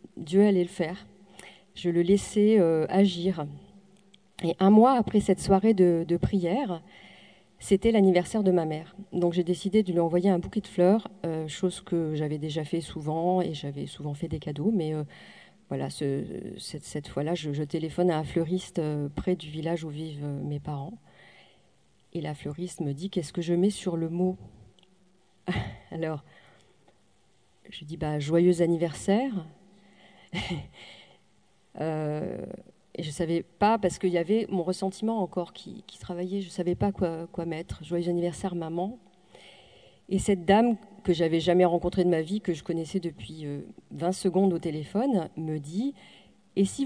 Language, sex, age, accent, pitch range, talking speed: French, female, 40-59, French, 160-195 Hz, 175 wpm